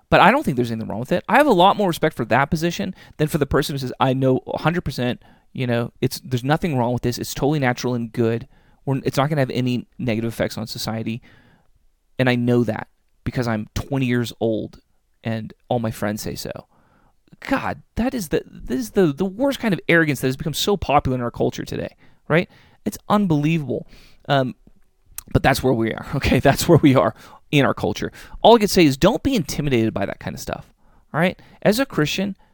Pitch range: 115-160 Hz